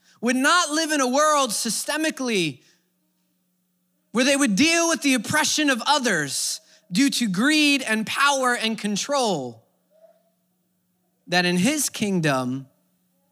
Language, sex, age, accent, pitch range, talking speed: English, male, 20-39, American, 180-230 Hz, 120 wpm